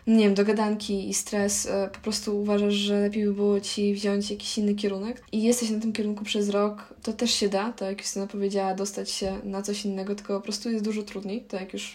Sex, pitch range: female, 205-235 Hz